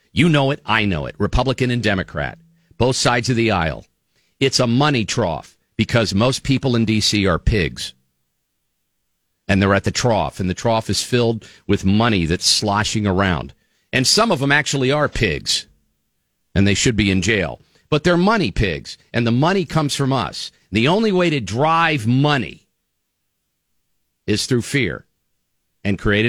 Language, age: English, 50-69